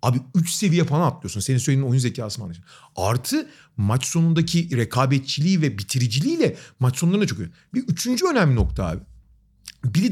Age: 40-59